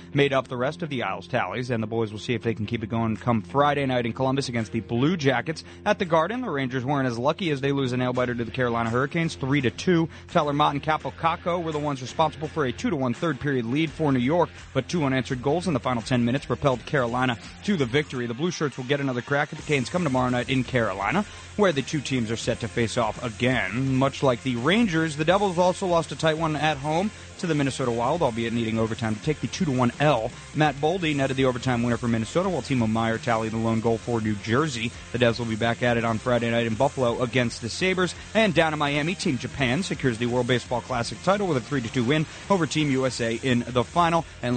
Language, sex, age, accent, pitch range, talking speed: English, male, 30-49, American, 120-155 Hz, 260 wpm